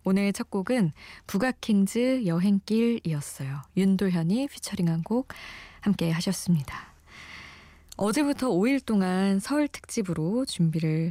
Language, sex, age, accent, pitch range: Korean, female, 20-39, native, 165-225 Hz